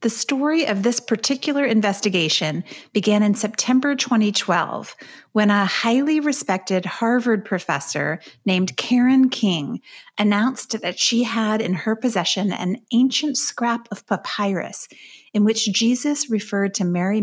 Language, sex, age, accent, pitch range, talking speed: English, female, 40-59, American, 180-240 Hz, 130 wpm